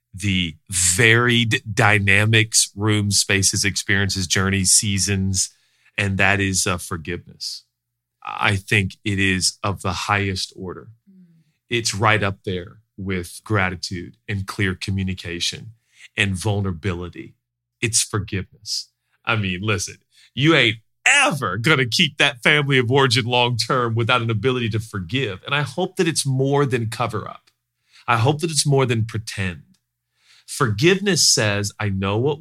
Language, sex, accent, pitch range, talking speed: English, male, American, 100-120 Hz, 140 wpm